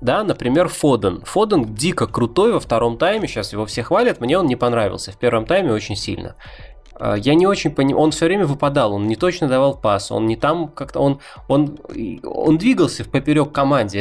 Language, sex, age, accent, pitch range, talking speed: Russian, male, 20-39, native, 115-150 Hz, 185 wpm